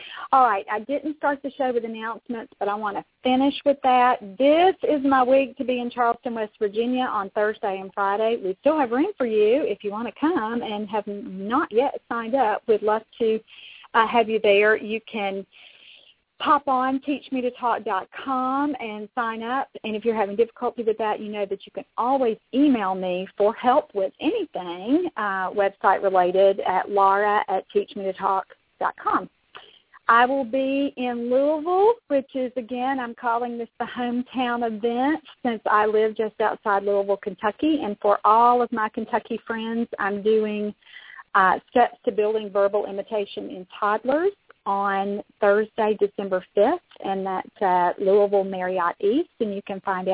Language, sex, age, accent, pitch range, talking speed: English, female, 40-59, American, 205-255 Hz, 165 wpm